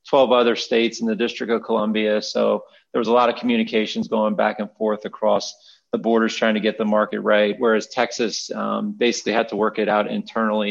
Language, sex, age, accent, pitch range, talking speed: English, male, 30-49, American, 110-150 Hz, 215 wpm